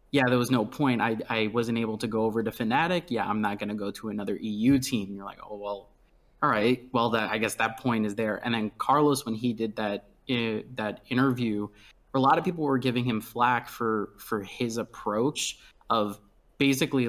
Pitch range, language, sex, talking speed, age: 110-130 Hz, English, male, 220 wpm, 20-39